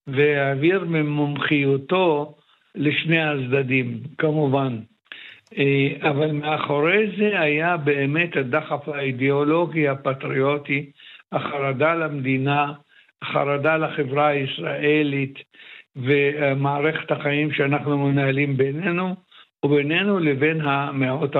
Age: 60-79